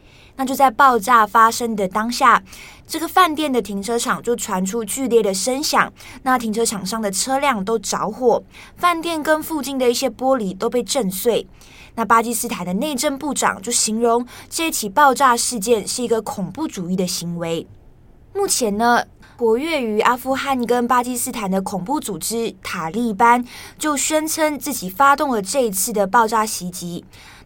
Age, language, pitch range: 20-39, Chinese, 205-265 Hz